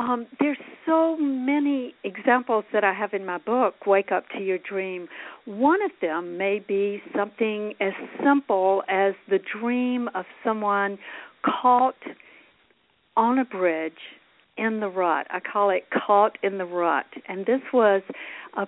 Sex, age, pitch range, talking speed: female, 50-69, 185-250 Hz, 150 wpm